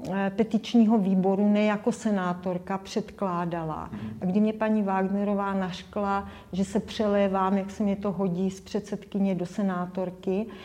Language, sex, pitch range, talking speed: Czech, female, 195-215 Hz, 135 wpm